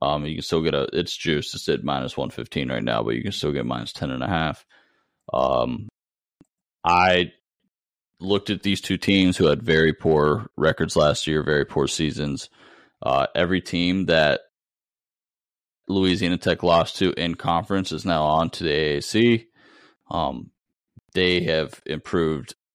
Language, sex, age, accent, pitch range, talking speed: English, male, 30-49, American, 75-90 Hz, 165 wpm